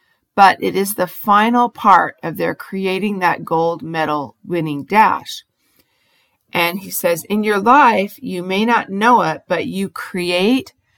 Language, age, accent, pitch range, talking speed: English, 40-59, American, 160-205 Hz, 155 wpm